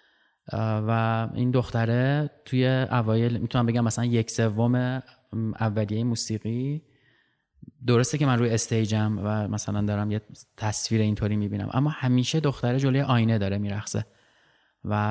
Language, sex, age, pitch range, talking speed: Persian, male, 20-39, 110-140 Hz, 125 wpm